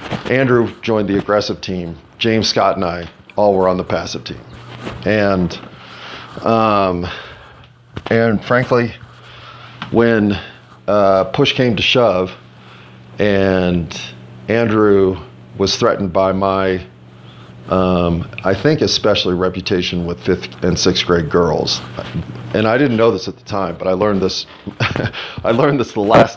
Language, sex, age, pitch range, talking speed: English, male, 40-59, 90-115 Hz, 135 wpm